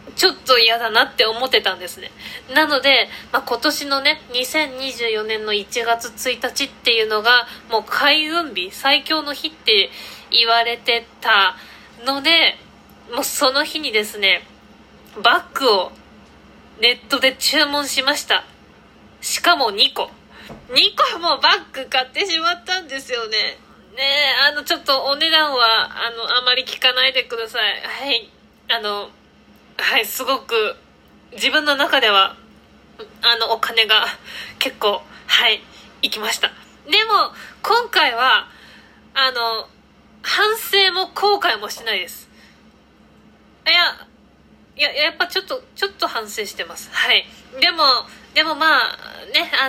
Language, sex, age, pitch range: Japanese, female, 20-39, 235-315 Hz